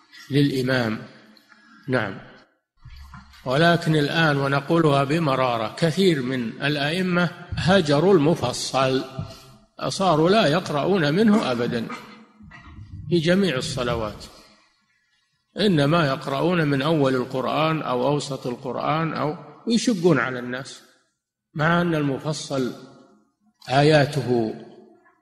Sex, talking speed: male, 85 wpm